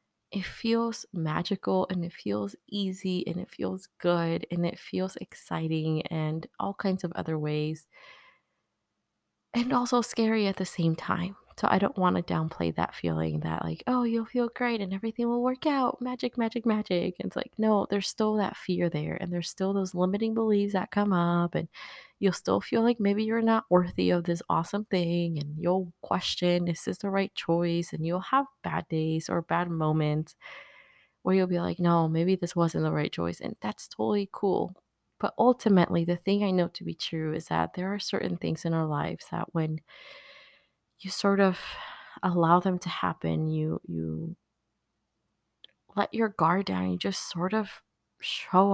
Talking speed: 185 wpm